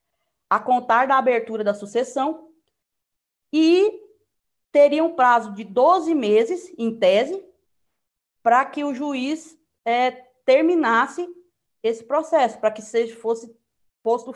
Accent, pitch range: Brazilian, 210-275 Hz